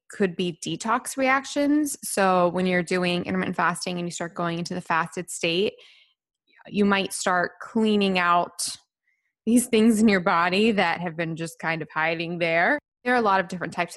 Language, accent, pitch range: English, American, 175-220 Hz